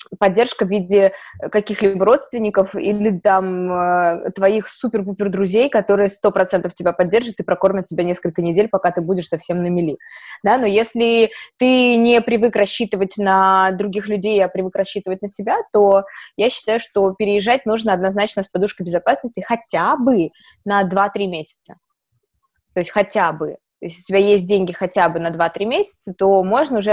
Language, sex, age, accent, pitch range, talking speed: Russian, female, 20-39, native, 190-230 Hz, 165 wpm